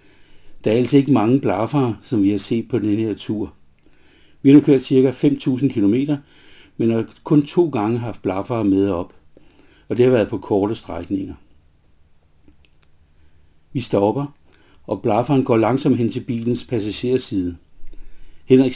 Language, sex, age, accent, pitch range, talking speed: Danish, male, 60-79, native, 95-130 Hz, 155 wpm